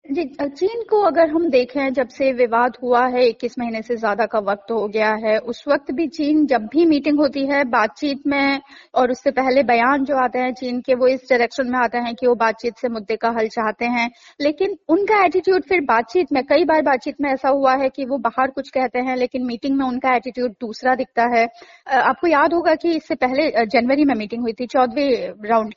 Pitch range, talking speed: 235-290 Hz, 220 wpm